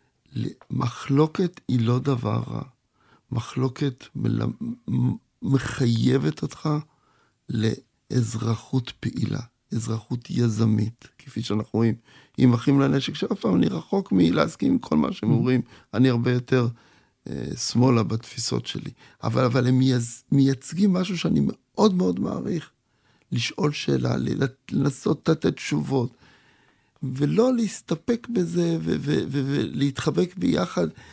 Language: Hebrew